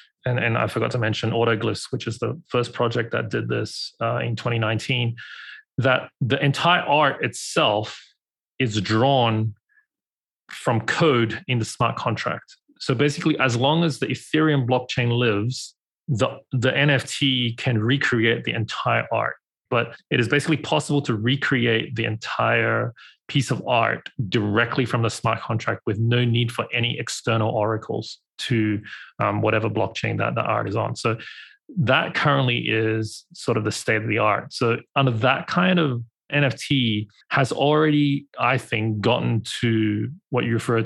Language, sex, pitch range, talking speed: English, male, 110-130 Hz, 155 wpm